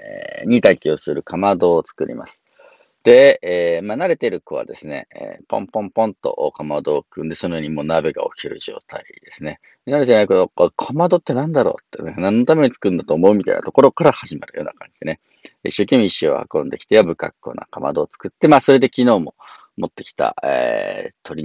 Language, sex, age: Japanese, male, 40-59